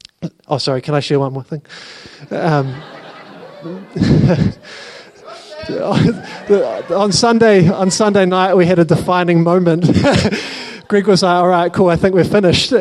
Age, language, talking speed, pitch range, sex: 20-39, English, 135 wpm, 165-205 Hz, male